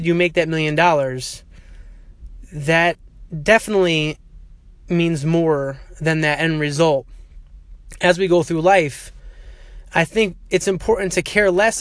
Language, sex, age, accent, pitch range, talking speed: English, male, 20-39, American, 140-180 Hz, 125 wpm